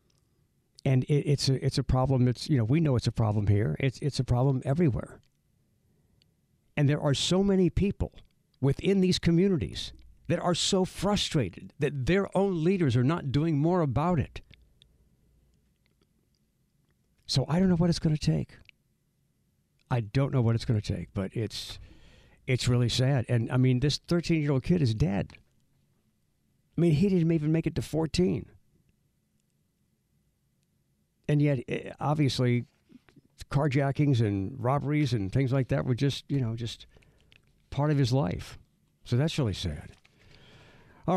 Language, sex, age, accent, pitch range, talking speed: English, male, 60-79, American, 115-155 Hz, 155 wpm